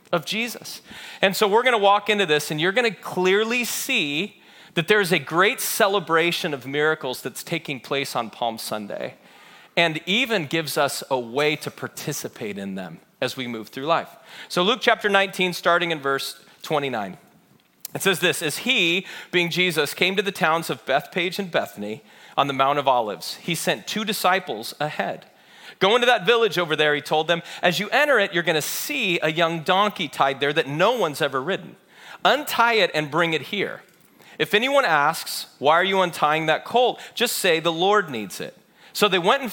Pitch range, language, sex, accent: 150-205 Hz, English, male, American